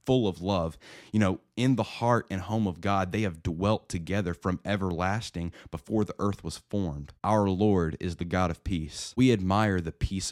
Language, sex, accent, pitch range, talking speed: English, male, American, 85-105 Hz, 200 wpm